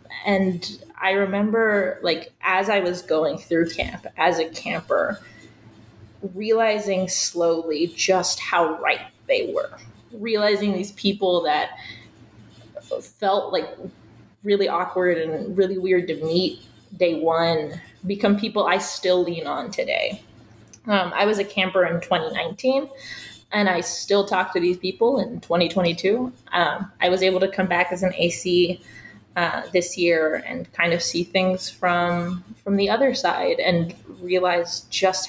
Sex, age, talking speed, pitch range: female, 20-39, 145 wpm, 170-205 Hz